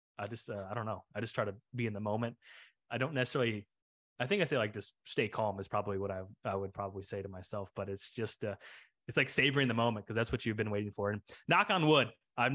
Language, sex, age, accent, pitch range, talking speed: English, male, 20-39, American, 100-120 Hz, 270 wpm